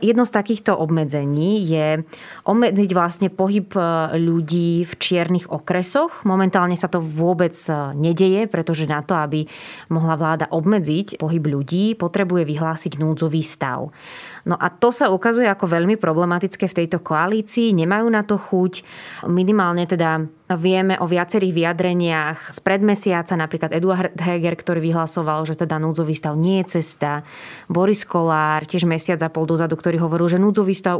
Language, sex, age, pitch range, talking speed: Slovak, female, 20-39, 160-195 Hz, 150 wpm